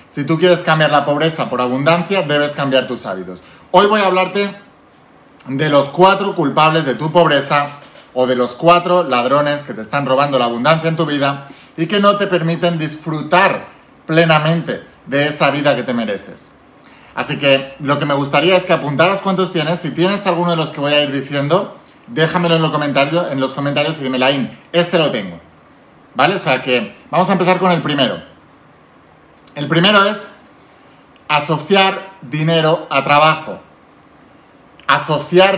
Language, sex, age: Spanish, male, 30-49